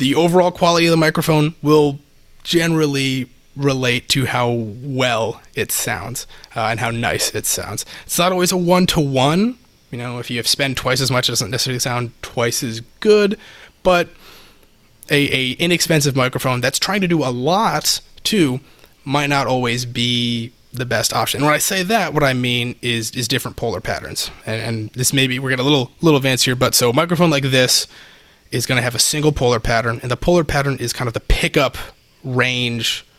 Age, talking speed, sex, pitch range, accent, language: 30-49, 195 wpm, male, 120-150 Hz, American, English